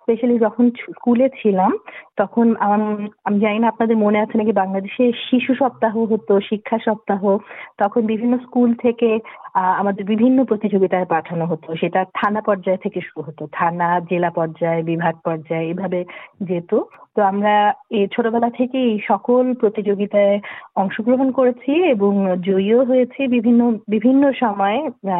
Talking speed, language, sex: 130 wpm, Bengali, female